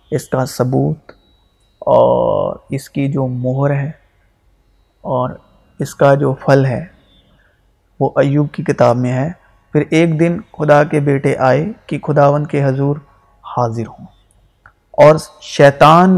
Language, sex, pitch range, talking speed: Urdu, male, 120-150 Hz, 135 wpm